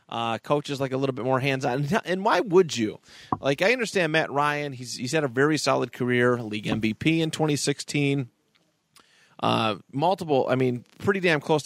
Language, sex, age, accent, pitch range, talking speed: English, male, 30-49, American, 120-160 Hz, 185 wpm